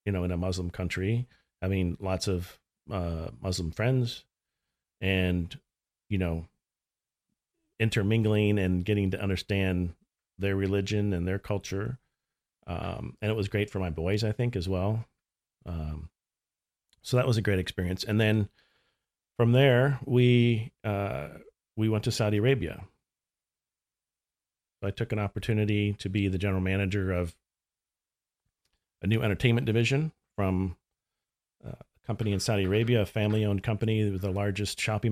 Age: 40-59